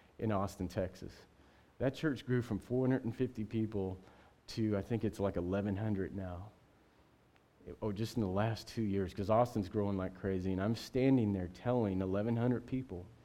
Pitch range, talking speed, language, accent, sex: 95-120 Hz, 165 wpm, English, American, male